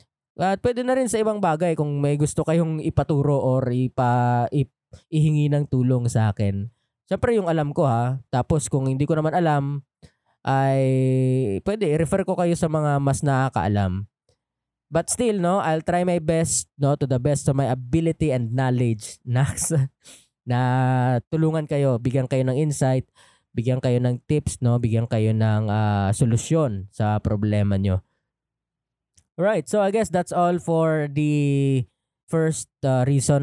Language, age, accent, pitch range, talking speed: Filipino, 20-39, native, 120-155 Hz, 160 wpm